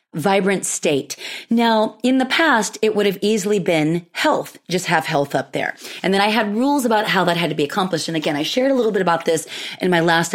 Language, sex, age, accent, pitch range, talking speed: English, female, 30-49, American, 165-205 Hz, 240 wpm